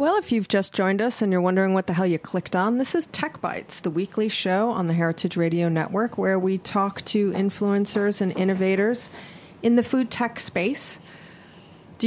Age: 40-59